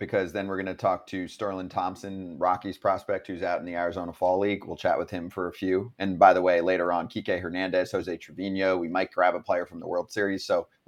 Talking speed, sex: 255 wpm, male